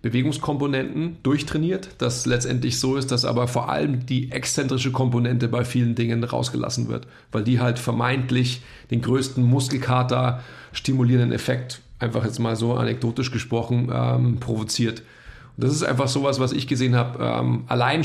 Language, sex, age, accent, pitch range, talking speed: German, male, 40-59, German, 120-130 Hz, 155 wpm